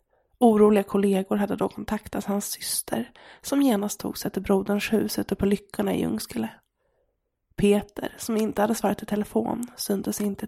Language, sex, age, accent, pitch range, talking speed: English, female, 20-39, Swedish, 205-225 Hz, 160 wpm